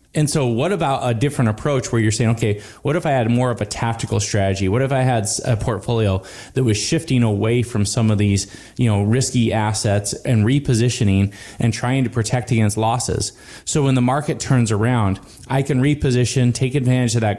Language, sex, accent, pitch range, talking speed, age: English, male, American, 110-130 Hz, 205 wpm, 20-39